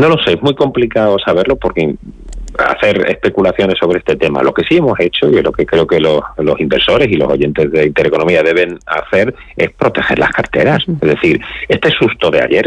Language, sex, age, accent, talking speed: Spanish, male, 40-59, Spanish, 205 wpm